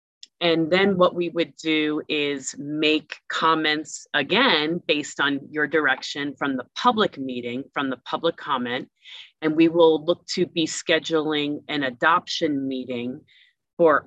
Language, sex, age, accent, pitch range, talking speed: English, female, 30-49, American, 145-175 Hz, 140 wpm